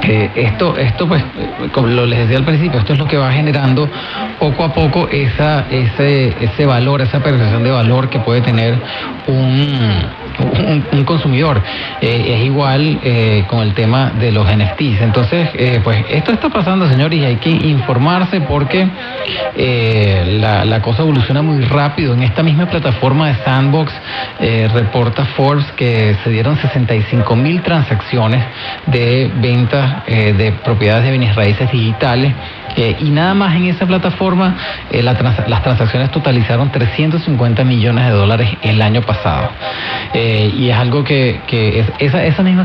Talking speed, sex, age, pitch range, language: 165 wpm, male, 30-49, 115-145 Hz, Spanish